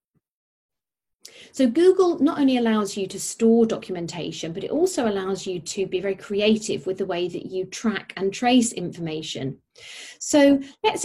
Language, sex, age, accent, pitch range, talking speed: English, female, 40-59, British, 185-230 Hz, 160 wpm